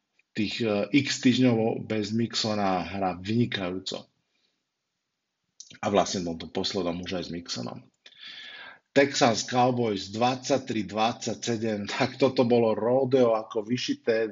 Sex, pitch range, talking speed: male, 105-125 Hz, 100 wpm